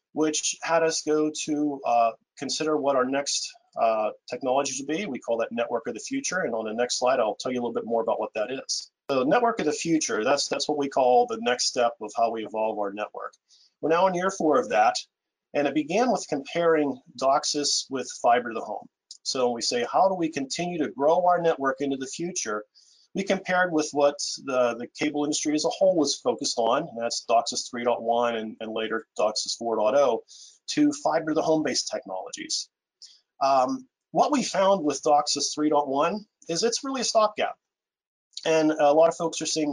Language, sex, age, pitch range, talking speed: English, male, 40-59, 125-165 Hz, 200 wpm